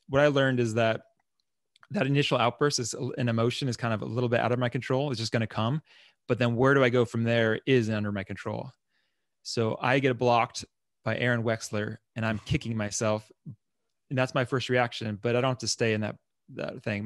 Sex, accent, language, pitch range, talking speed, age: male, American, English, 110-130 Hz, 225 wpm, 20-39